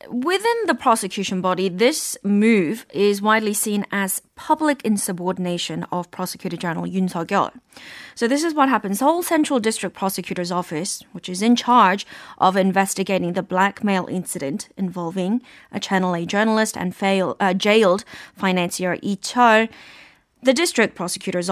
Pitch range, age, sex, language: 190-240 Hz, 20-39, female, Korean